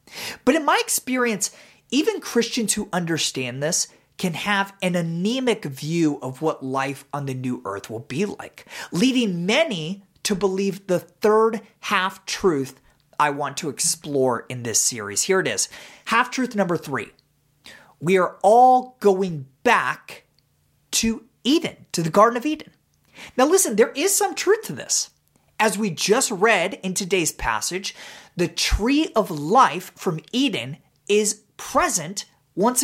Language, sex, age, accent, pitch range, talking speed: English, male, 30-49, American, 160-235 Hz, 145 wpm